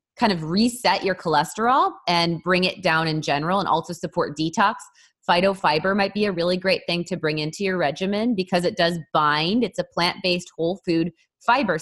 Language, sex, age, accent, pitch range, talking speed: English, female, 20-39, American, 155-185 Hz, 190 wpm